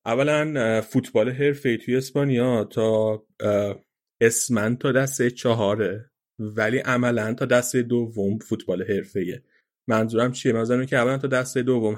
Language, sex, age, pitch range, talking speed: Persian, male, 30-49, 110-130 Hz, 125 wpm